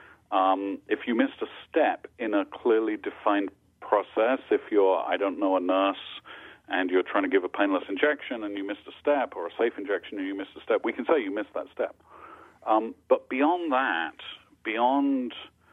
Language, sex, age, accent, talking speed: English, male, 40-59, American, 200 wpm